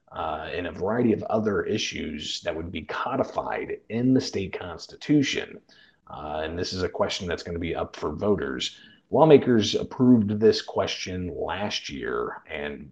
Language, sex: English, male